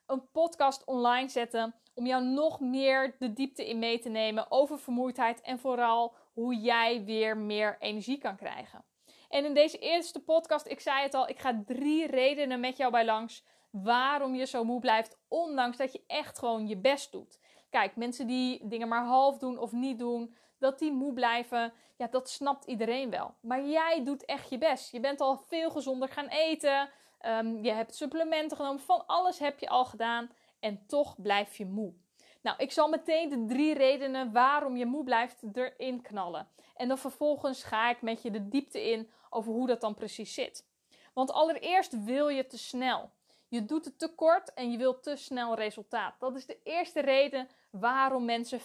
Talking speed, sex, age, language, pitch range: 190 wpm, female, 10-29, Dutch, 235-280 Hz